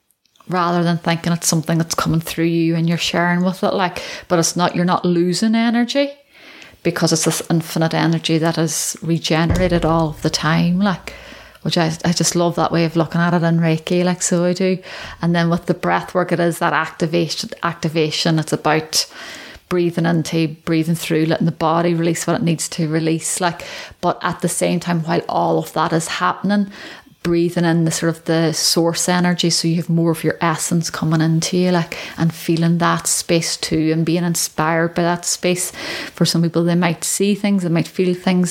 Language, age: English, 30-49